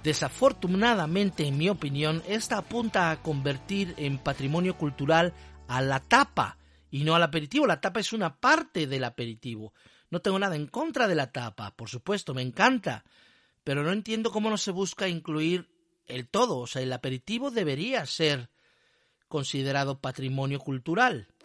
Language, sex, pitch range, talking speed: Spanish, male, 145-195 Hz, 155 wpm